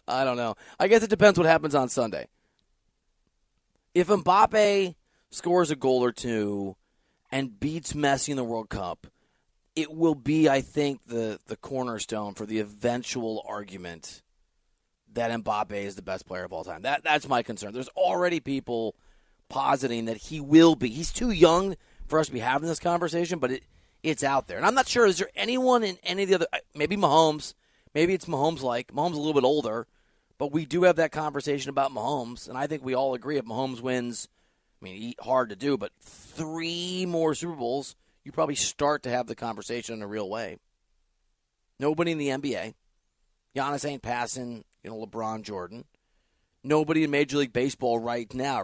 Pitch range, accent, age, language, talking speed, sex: 115-160 Hz, American, 30-49, English, 190 wpm, male